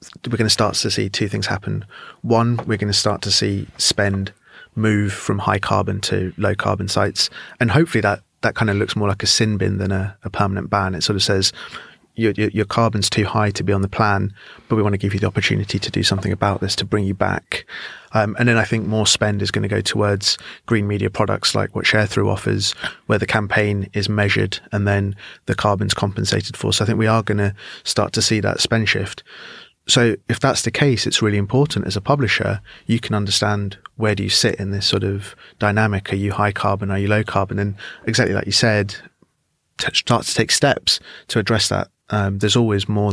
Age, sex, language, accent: 30-49, male, English, British